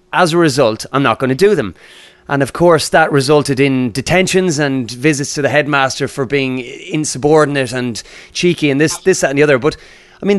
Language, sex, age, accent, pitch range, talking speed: English, male, 30-49, Irish, 130-180 Hz, 210 wpm